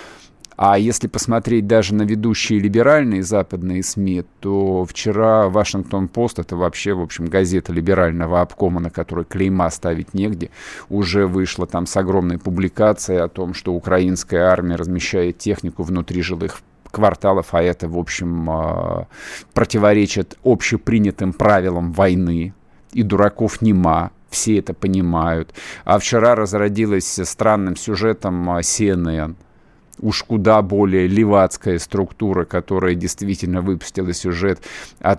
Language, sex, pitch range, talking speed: Russian, male, 90-105 Hz, 120 wpm